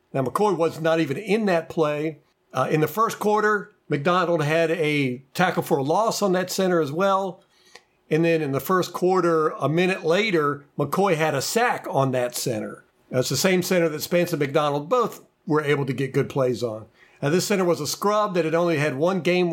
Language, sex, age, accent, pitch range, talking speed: English, male, 50-69, American, 150-195 Hz, 210 wpm